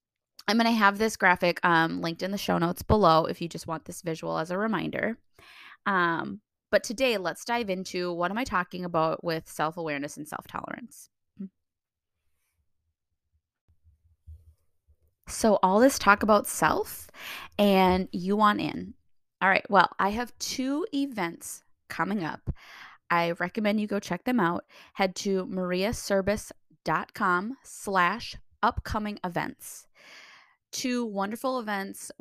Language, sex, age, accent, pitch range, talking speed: English, female, 20-39, American, 175-215 Hz, 135 wpm